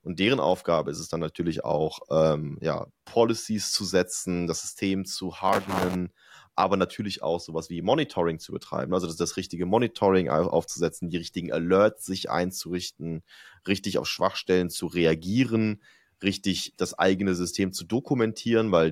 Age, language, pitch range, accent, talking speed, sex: 30-49, German, 85-100 Hz, German, 150 wpm, male